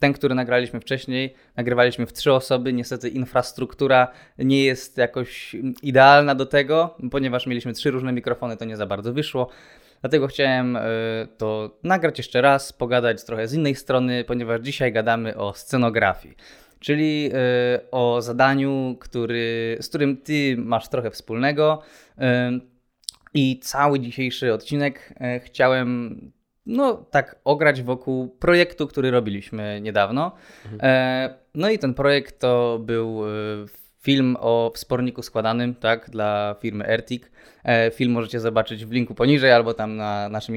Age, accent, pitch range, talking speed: 20-39, native, 115-140 Hz, 130 wpm